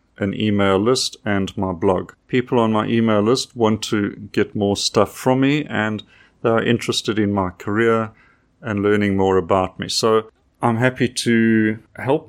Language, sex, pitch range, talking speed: English, male, 100-120 Hz, 170 wpm